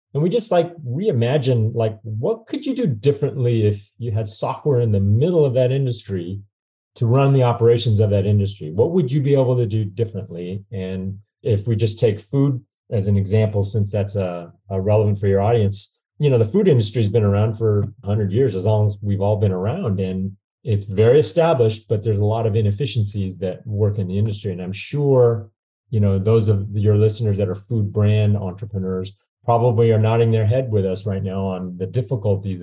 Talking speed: 205 wpm